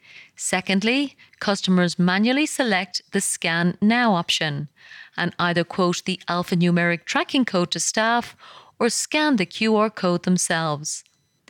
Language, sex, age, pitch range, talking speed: English, female, 30-49, 170-220 Hz, 120 wpm